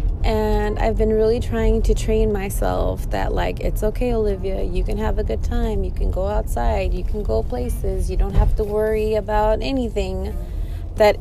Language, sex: English, female